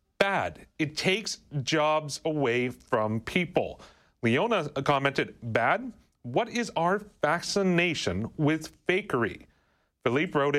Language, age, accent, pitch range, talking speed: English, 40-59, American, 130-180 Hz, 100 wpm